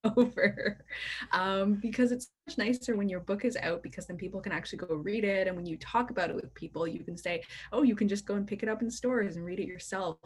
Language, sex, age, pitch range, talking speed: English, female, 20-39, 170-225 Hz, 265 wpm